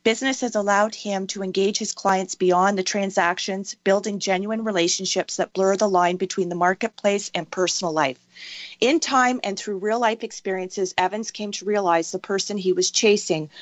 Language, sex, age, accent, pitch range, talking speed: English, female, 40-59, American, 180-215 Hz, 170 wpm